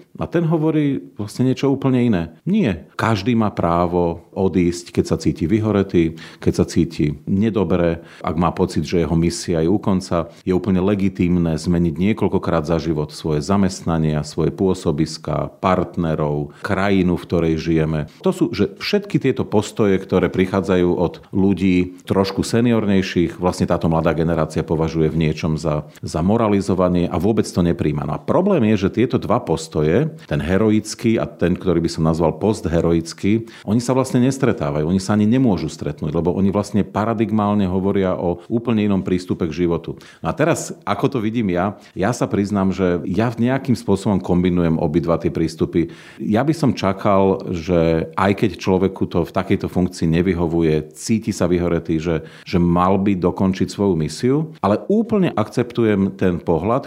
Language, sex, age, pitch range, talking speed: Slovak, male, 40-59, 85-110 Hz, 165 wpm